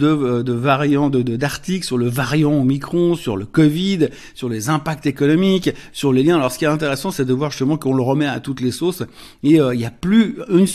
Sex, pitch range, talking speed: male, 135-165 Hz, 240 wpm